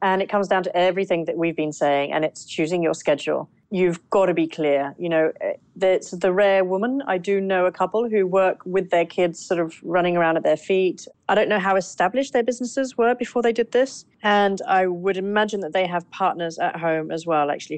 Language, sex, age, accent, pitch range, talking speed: English, female, 30-49, British, 160-195 Hz, 230 wpm